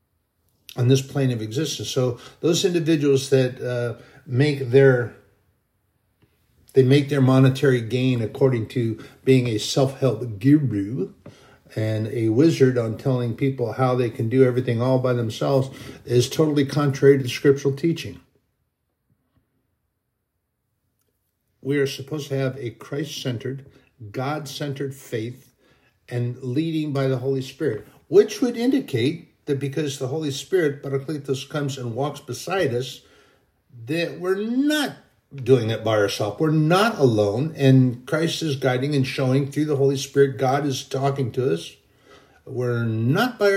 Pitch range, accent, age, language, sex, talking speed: 120-145 Hz, American, 50-69, English, male, 145 wpm